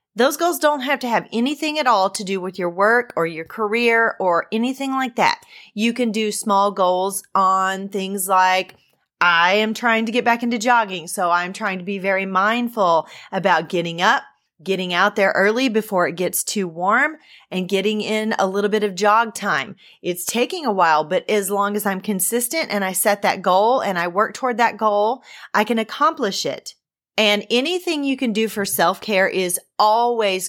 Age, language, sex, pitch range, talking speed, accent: 30-49, English, female, 190-230 Hz, 195 wpm, American